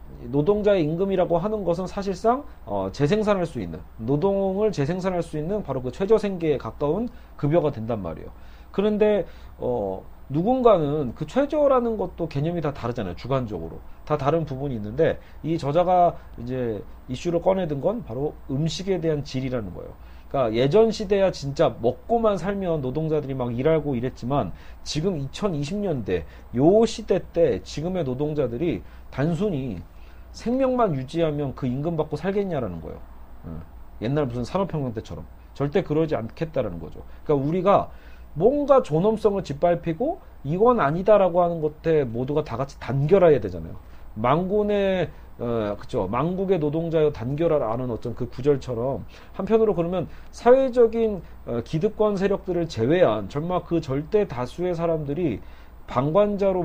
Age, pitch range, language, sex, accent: 40-59, 120-190 Hz, Korean, male, native